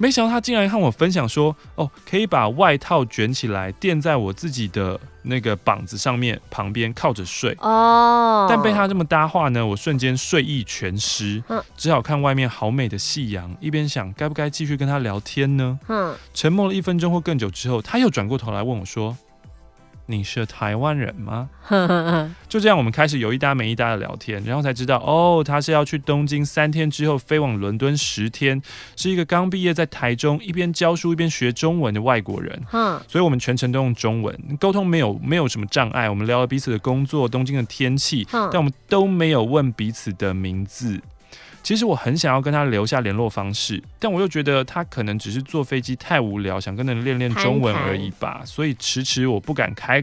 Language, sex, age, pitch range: Chinese, male, 20-39, 110-155 Hz